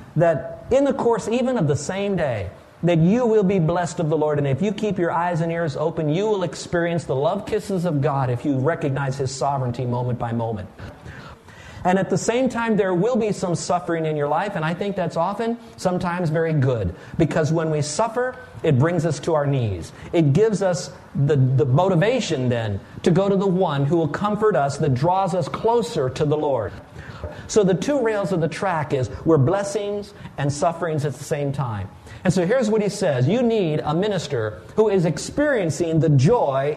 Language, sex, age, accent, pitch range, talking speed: English, male, 50-69, American, 145-195 Hz, 205 wpm